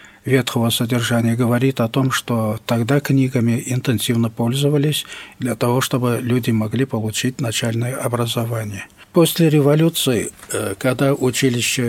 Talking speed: 110 wpm